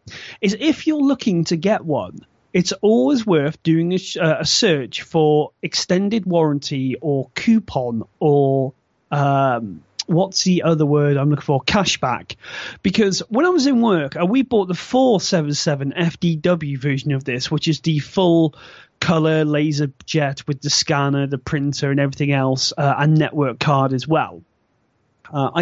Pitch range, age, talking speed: 145-205 Hz, 30-49, 155 wpm